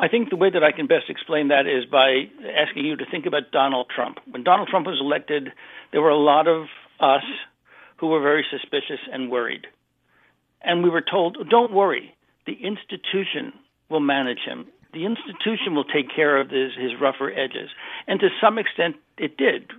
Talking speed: 190 wpm